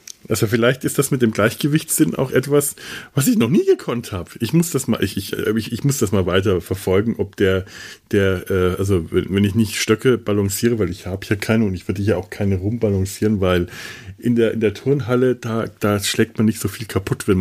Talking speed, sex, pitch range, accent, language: 220 wpm, male, 95-120 Hz, German, German